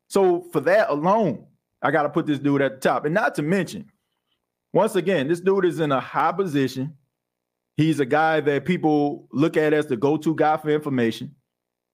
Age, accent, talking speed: 40-59, American, 195 wpm